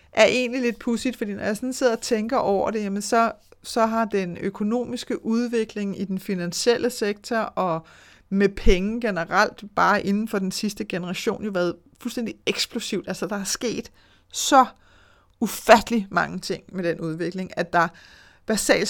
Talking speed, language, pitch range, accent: 165 wpm, Danish, 190-225 Hz, native